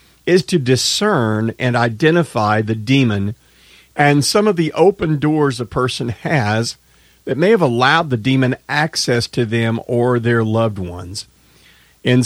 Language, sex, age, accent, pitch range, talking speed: English, male, 50-69, American, 105-135 Hz, 145 wpm